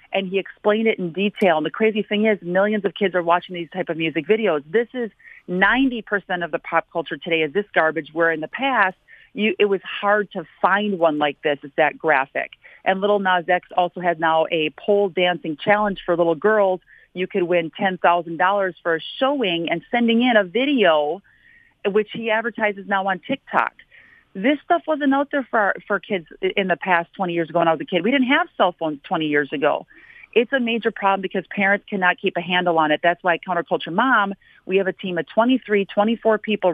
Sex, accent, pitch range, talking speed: female, American, 170-215 Hz, 220 wpm